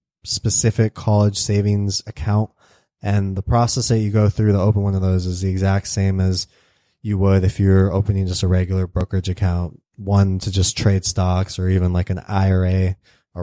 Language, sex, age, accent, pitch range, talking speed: English, male, 20-39, American, 95-110 Hz, 190 wpm